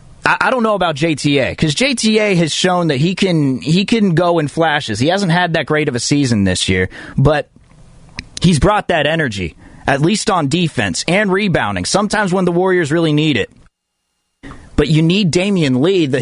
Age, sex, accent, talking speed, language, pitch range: 30-49, male, American, 185 wpm, English, 140-185 Hz